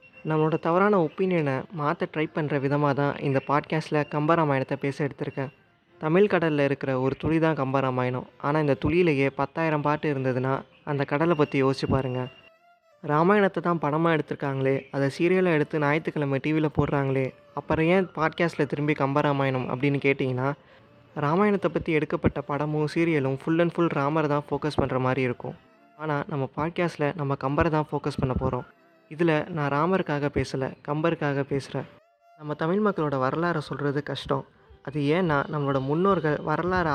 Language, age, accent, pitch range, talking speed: Tamil, 20-39, native, 140-160 Hz, 140 wpm